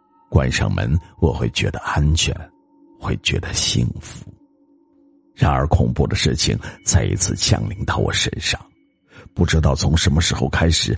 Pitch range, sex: 80-110 Hz, male